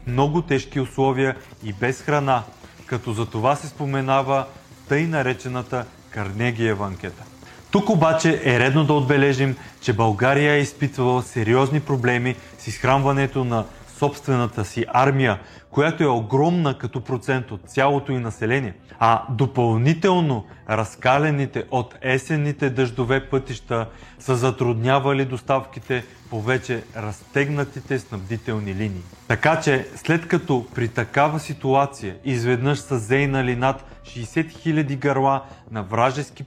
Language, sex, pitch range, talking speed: Bulgarian, male, 120-150 Hz, 120 wpm